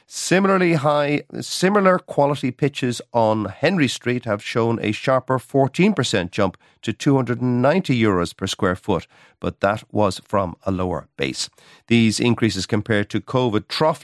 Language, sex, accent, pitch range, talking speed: English, male, Irish, 105-135 Hz, 135 wpm